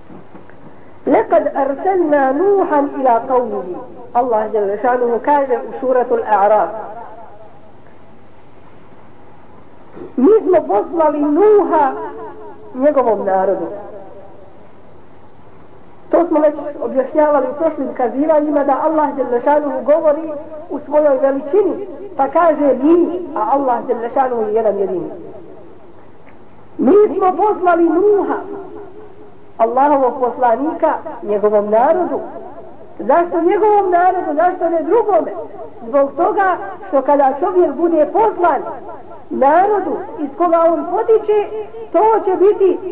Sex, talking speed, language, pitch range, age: female, 75 wpm, English, 270-365 Hz, 50-69